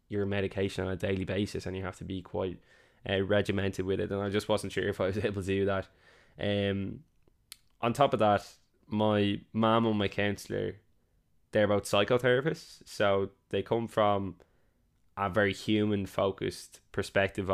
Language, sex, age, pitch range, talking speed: English, male, 10-29, 95-105 Hz, 175 wpm